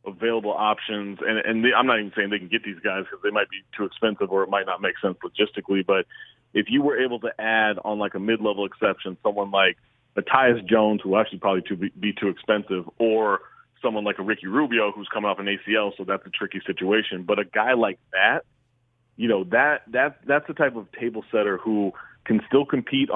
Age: 30-49